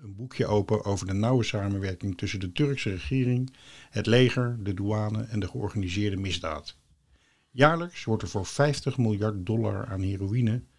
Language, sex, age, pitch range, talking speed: Dutch, male, 50-69, 105-130 Hz, 155 wpm